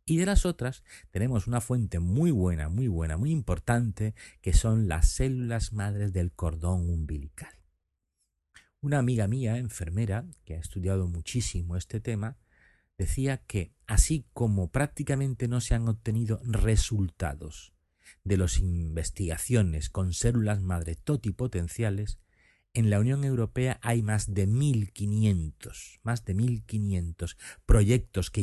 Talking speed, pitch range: 130 wpm, 90-120 Hz